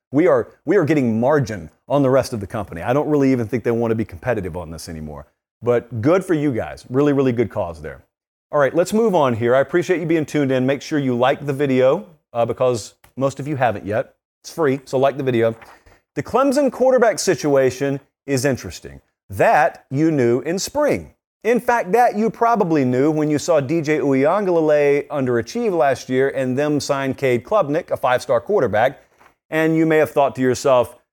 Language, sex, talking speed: English, male, 205 wpm